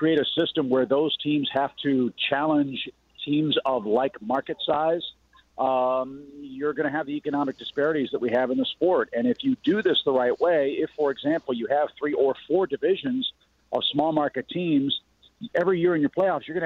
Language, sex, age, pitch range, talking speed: English, male, 50-69, 125-160 Hz, 200 wpm